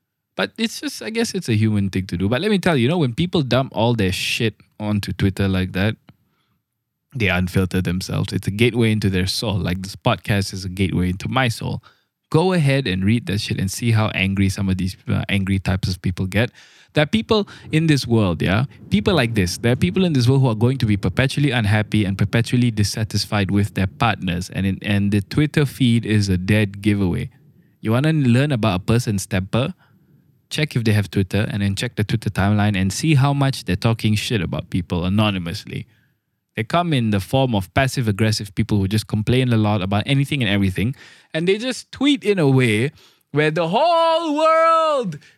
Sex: male